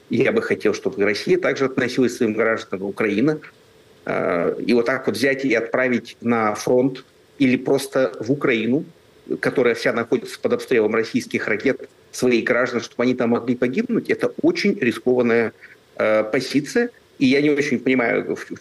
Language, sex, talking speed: Russian, male, 155 wpm